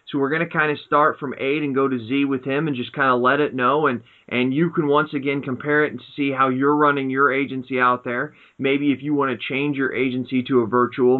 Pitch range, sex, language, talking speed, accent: 115-135 Hz, male, English, 270 wpm, American